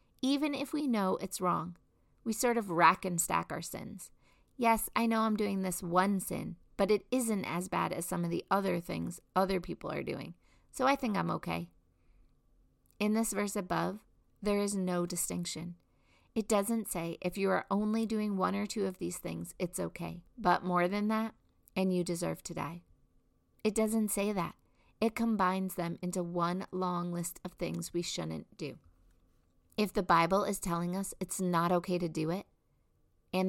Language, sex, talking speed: English, female, 185 wpm